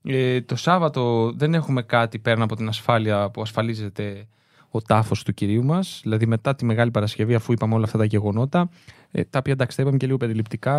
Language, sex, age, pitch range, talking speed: Greek, male, 20-39, 110-135 Hz, 190 wpm